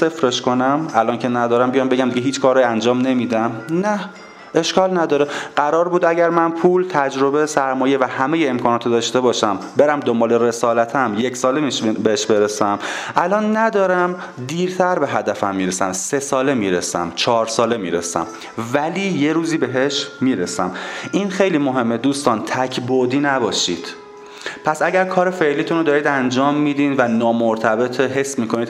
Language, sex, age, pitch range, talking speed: Persian, male, 30-49, 120-150 Hz, 145 wpm